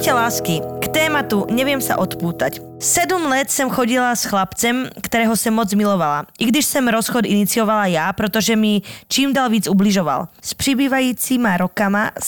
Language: Slovak